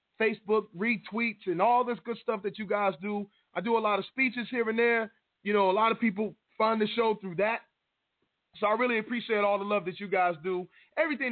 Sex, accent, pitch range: male, American, 180-235 Hz